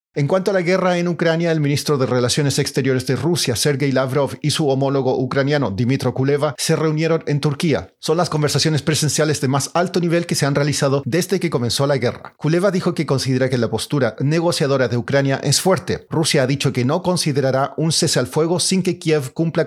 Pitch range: 135-160 Hz